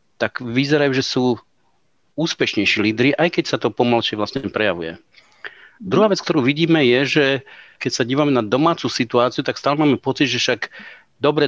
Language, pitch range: Slovak, 120-145 Hz